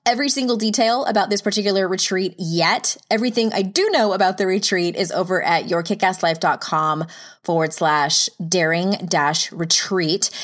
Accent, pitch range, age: American, 180-230 Hz, 20-39